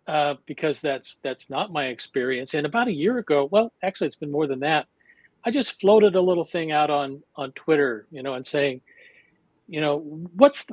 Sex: male